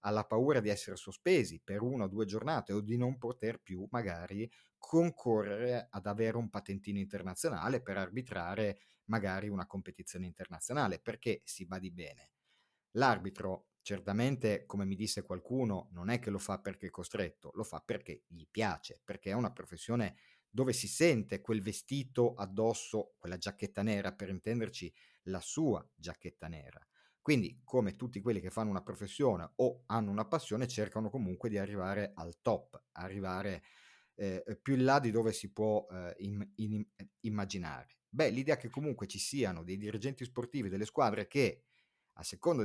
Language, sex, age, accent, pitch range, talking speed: Italian, male, 50-69, native, 95-115 Hz, 165 wpm